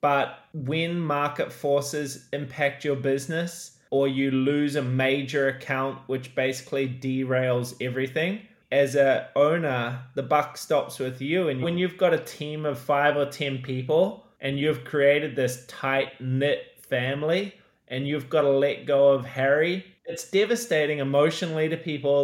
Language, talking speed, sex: English, 150 wpm, male